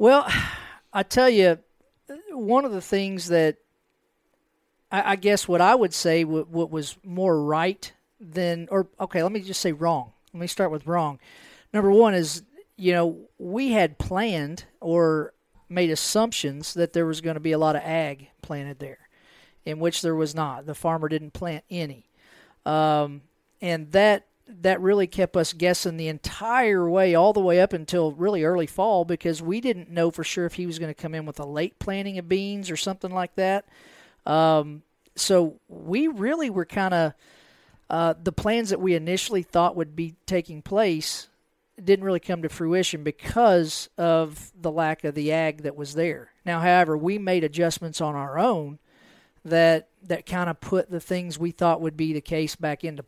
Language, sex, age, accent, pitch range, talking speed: English, male, 40-59, American, 160-190 Hz, 185 wpm